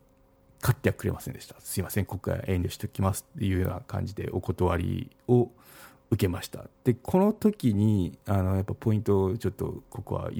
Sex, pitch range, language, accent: male, 95-130 Hz, Japanese, native